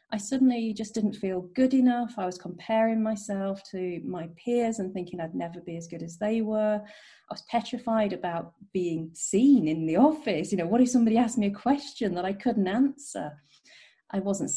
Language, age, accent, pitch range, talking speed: English, 40-59, British, 180-230 Hz, 200 wpm